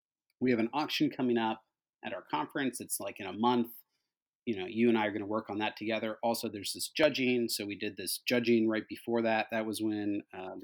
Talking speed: 235 wpm